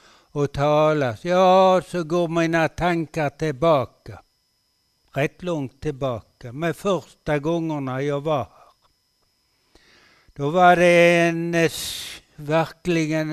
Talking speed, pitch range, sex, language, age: 95 wpm, 145-175 Hz, male, Swedish, 60-79